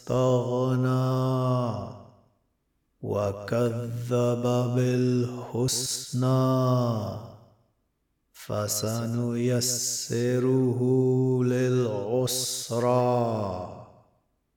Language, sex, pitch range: Arabic, male, 120-130 Hz